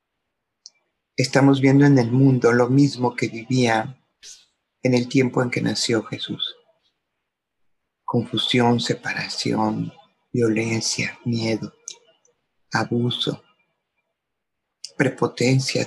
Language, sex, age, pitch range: Spanish, male, 50-69, 120-135 Hz